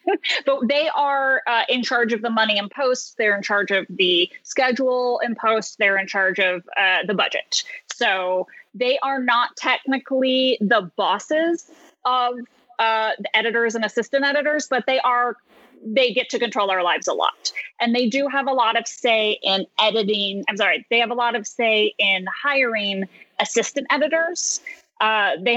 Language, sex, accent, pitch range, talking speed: English, female, American, 205-270 Hz, 175 wpm